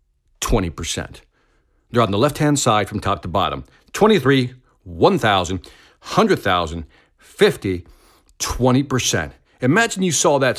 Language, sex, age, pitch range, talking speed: English, male, 50-69, 110-185 Hz, 110 wpm